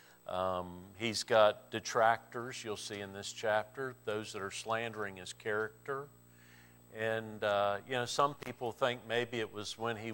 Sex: male